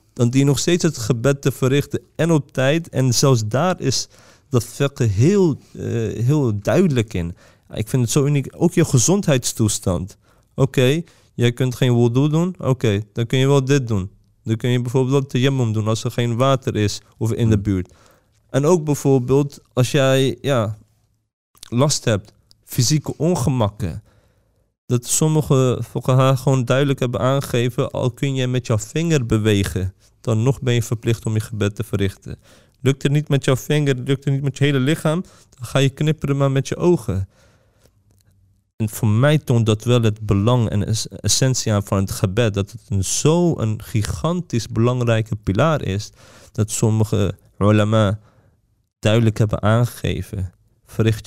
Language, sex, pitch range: Dutch, male, 110-140 Hz